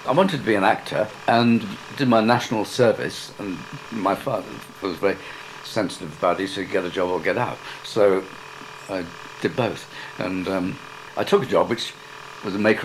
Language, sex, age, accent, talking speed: English, male, 60-79, British, 190 wpm